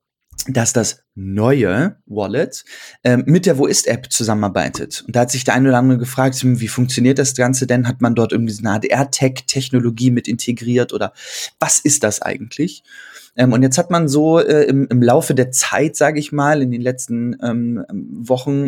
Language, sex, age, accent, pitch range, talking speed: German, male, 20-39, German, 120-140 Hz, 185 wpm